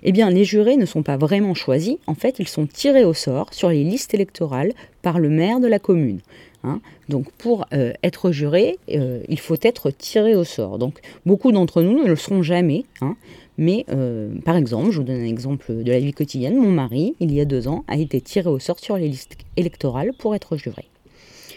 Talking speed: 225 wpm